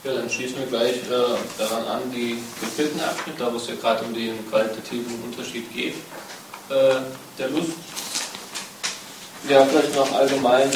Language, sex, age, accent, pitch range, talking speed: German, male, 20-39, German, 120-140 Hz, 155 wpm